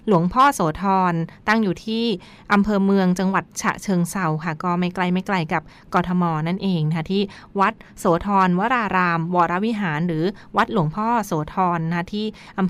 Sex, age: female, 20-39